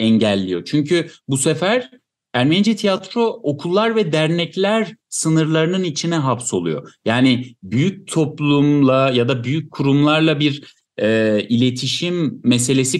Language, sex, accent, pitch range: Turkish, male, native, 115-170 Hz